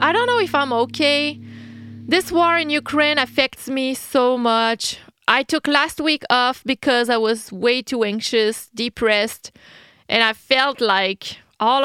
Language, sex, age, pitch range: English, female, 30-49, 180-235 Hz